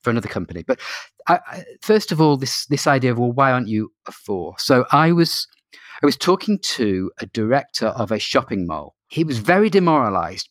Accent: British